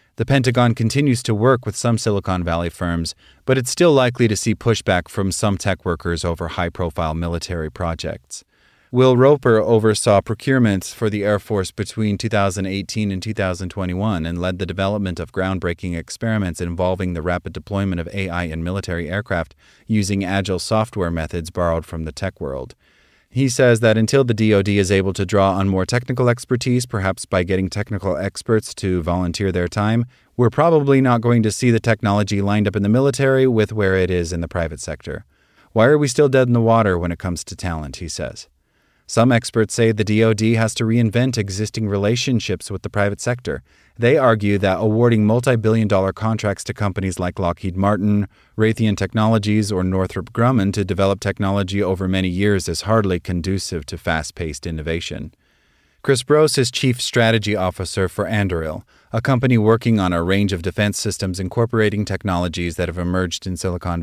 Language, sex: English, male